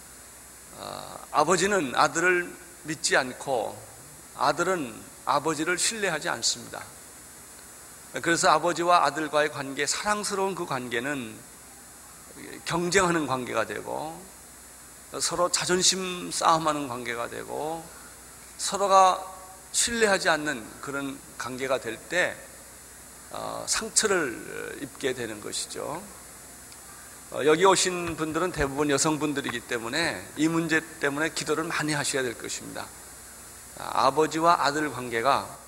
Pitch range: 130-175 Hz